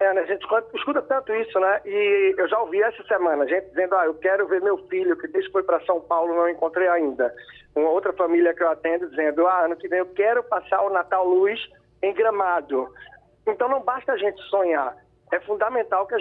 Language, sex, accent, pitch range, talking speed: Portuguese, male, Brazilian, 165-235 Hz, 225 wpm